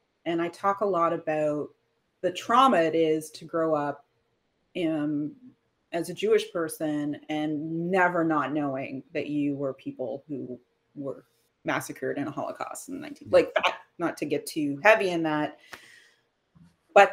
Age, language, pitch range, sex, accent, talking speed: 30-49, English, 160-210 Hz, female, American, 150 wpm